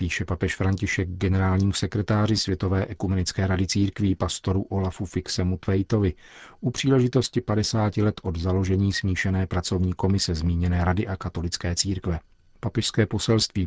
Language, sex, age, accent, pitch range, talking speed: Czech, male, 40-59, native, 95-110 Hz, 125 wpm